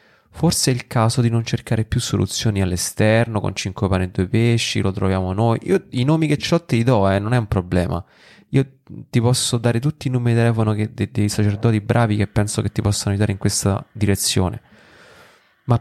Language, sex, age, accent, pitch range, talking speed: Italian, male, 30-49, native, 100-125 Hz, 210 wpm